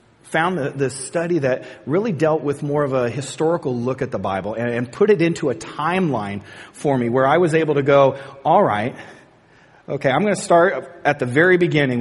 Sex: male